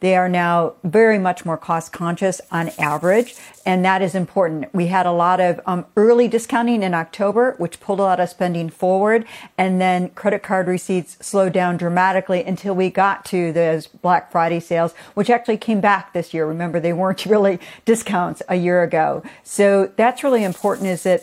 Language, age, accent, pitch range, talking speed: English, 50-69, American, 175-210 Hz, 185 wpm